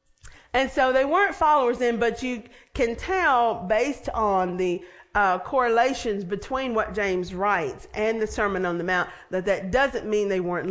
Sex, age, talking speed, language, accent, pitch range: female, 40-59, 175 wpm, English, American, 180-230 Hz